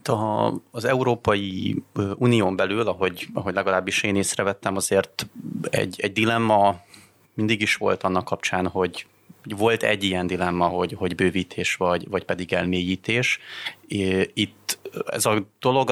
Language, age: Hungarian, 30-49